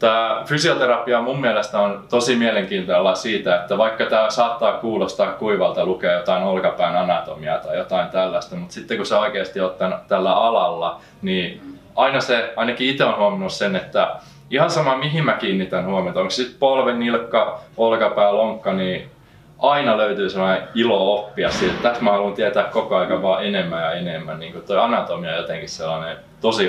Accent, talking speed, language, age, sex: native, 175 wpm, Finnish, 20-39, male